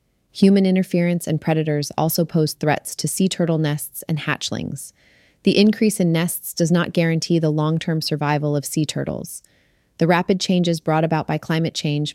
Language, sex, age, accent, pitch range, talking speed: English, female, 30-49, American, 150-180 Hz, 170 wpm